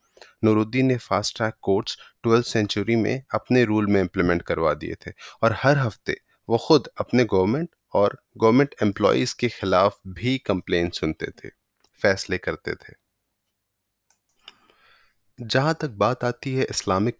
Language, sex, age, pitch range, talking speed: Urdu, male, 30-49, 105-130 Hz, 65 wpm